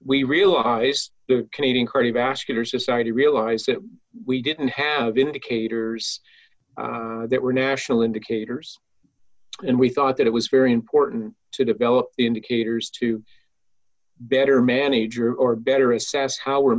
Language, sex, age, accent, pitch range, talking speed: English, male, 50-69, American, 115-135 Hz, 135 wpm